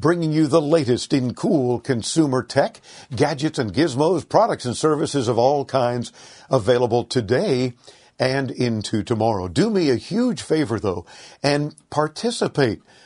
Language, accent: English, American